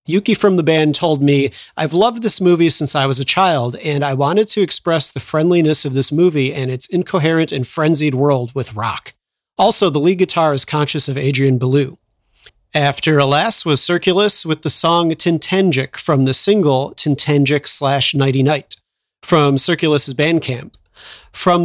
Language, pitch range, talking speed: English, 135-175 Hz, 170 wpm